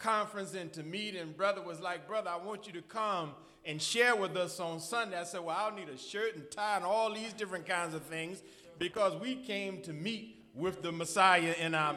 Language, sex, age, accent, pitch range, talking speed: English, male, 40-59, American, 170-215 Hz, 230 wpm